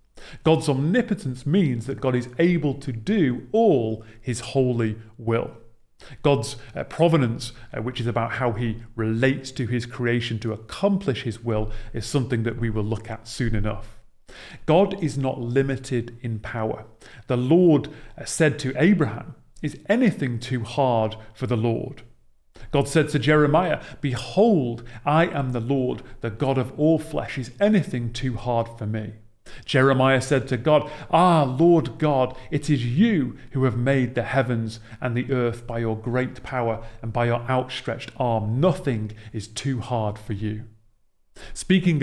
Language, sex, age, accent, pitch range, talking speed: English, male, 40-59, British, 115-145 Hz, 160 wpm